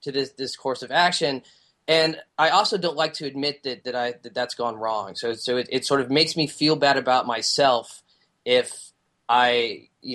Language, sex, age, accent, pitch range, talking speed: English, male, 20-39, American, 125-155 Hz, 205 wpm